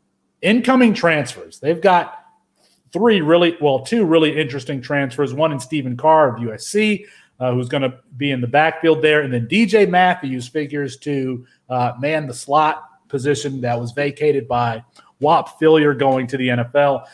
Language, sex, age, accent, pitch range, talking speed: English, male, 40-59, American, 125-155 Hz, 165 wpm